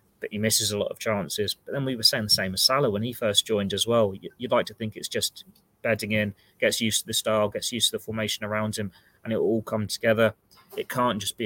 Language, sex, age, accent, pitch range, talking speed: English, male, 20-39, British, 100-110 Hz, 270 wpm